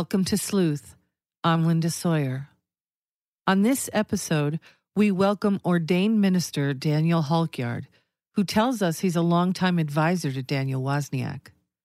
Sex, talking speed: female, 125 wpm